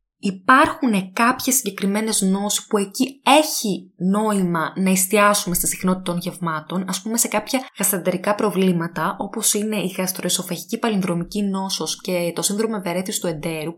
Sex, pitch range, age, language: female, 175-210 Hz, 20-39, Greek